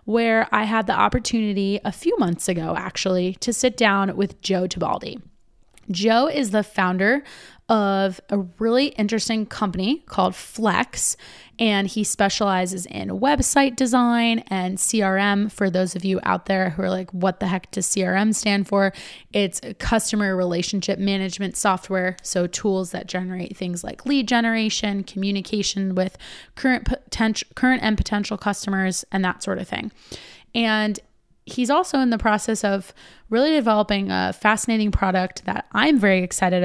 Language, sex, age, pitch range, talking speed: English, female, 20-39, 185-215 Hz, 155 wpm